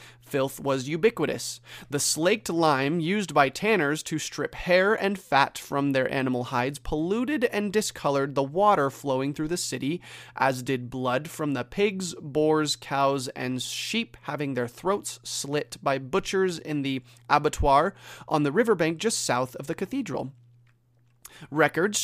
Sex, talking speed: male, 150 wpm